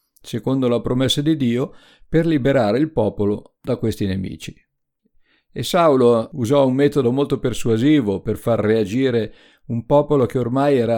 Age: 50-69